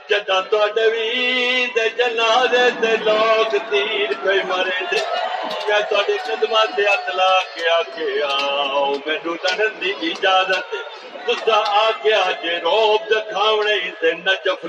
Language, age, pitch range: Urdu, 50-69, 180-220 Hz